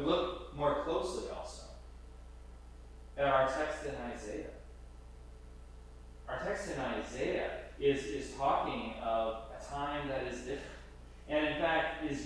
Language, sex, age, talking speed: English, male, 30-49, 125 wpm